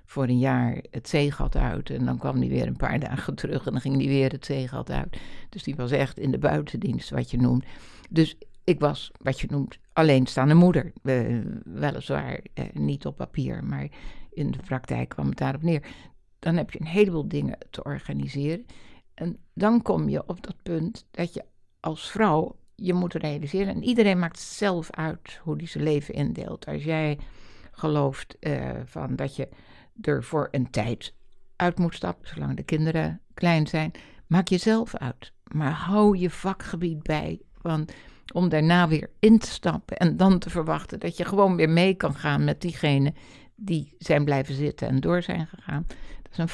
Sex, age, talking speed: female, 60-79, 185 wpm